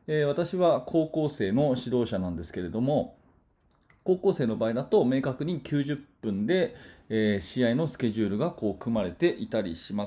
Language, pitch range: Japanese, 110-170 Hz